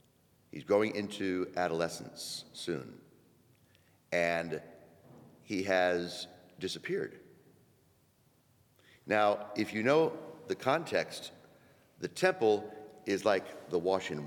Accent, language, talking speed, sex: American, English, 90 wpm, male